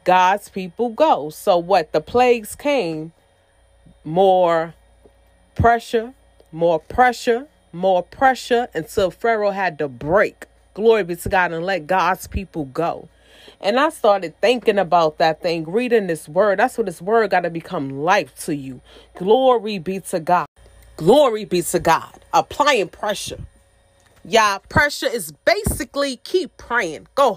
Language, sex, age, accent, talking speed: English, female, 30-49, American, 145 wpm